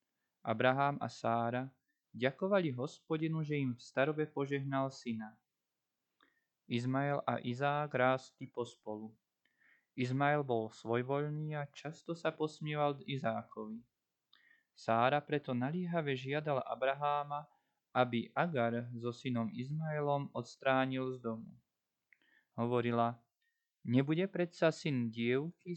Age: 20-39